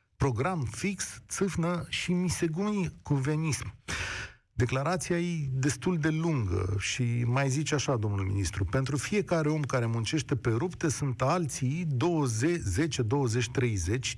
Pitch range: 115-170 Hz